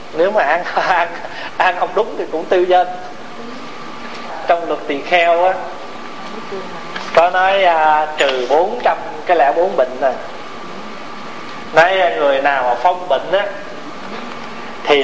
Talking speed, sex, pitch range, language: 130 wpm, male, 145-180 Hz, Vietnamese